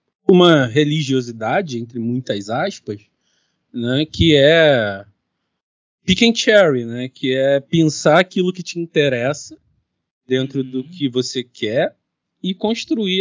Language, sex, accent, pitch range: Portuguese, male, Brazilian, 120-155 Hz